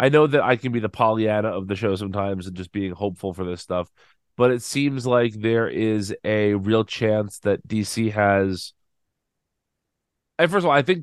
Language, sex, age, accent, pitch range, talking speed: English, male, 30-49, American, 100-120 Hz, 195 wpm